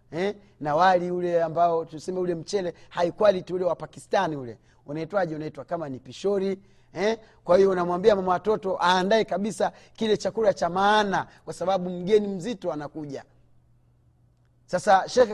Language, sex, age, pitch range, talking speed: Swahili, male, 30-49, 165-215 Hz, 145 wpm